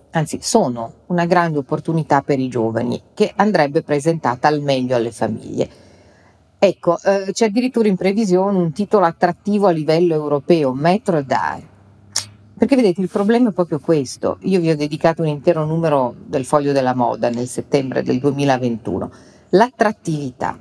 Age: 40-59